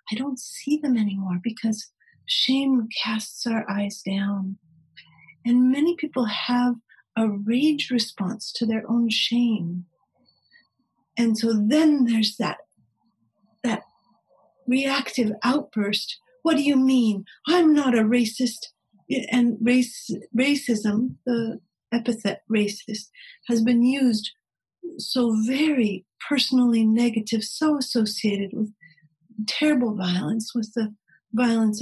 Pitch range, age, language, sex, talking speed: 215-255 Hz, 40-59, English, female, 110 wpm